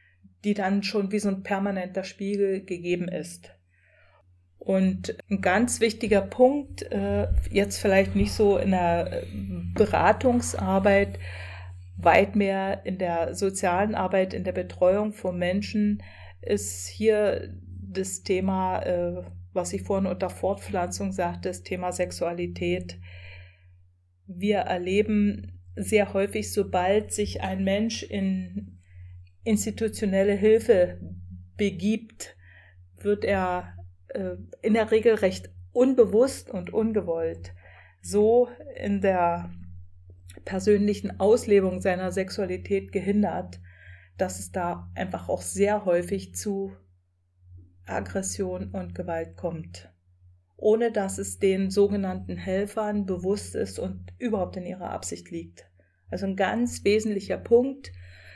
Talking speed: 110 wpm